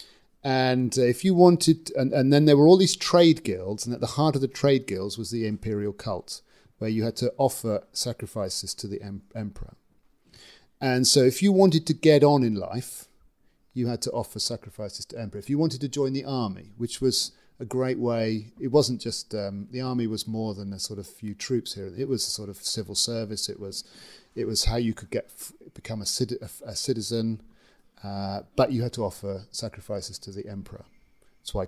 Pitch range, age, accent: 105-135 Hz, 40-59, British